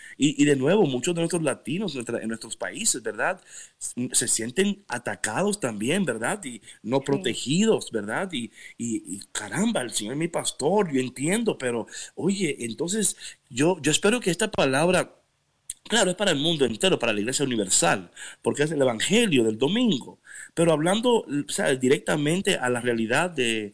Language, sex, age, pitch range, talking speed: Spanish, male, 50-69, 120-170 Hz, 160 wpm